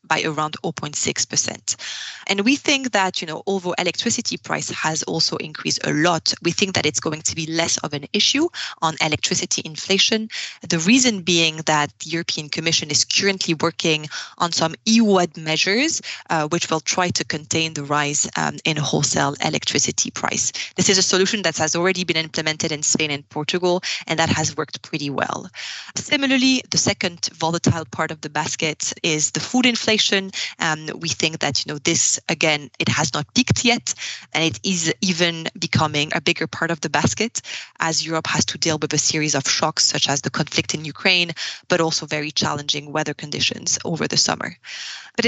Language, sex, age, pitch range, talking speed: English, female, 20-39, 155-185 Hz, 185 wpm